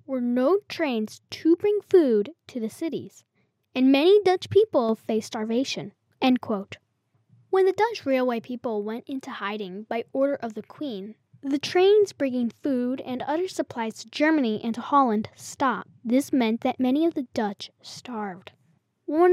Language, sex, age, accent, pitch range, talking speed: English, female, 10-29, American, 230-320 Hz, 160 wpm